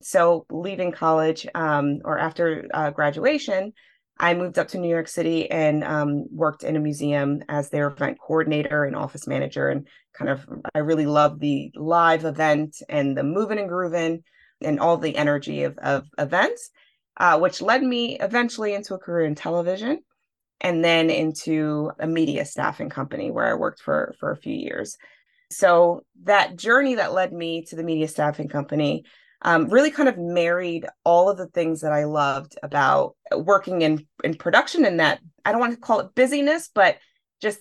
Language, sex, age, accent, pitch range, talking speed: English, female, 20-39, American, 155-195 Hz, 180 wpm